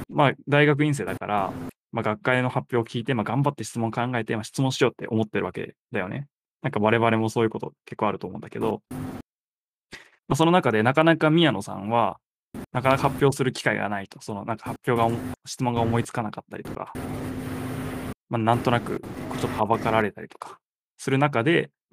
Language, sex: Japanese, male